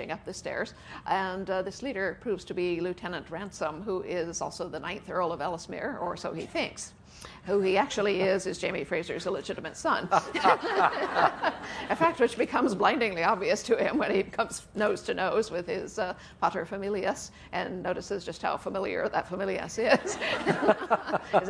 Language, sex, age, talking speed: English, female, 50-69, 170 wpm